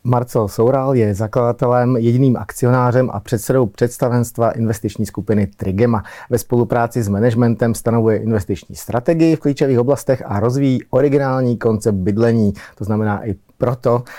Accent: native